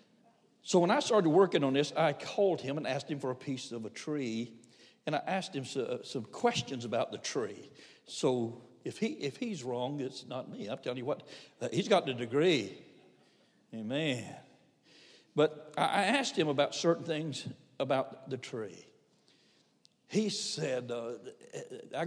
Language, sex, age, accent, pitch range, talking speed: English, male, 60-79, American, 130-190 Hz, 170 wpm